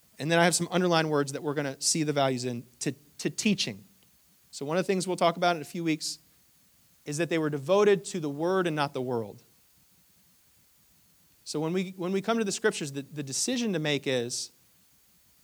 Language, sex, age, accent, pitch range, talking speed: English, male, 30-49, American, 125-170 Hz, 220 wpm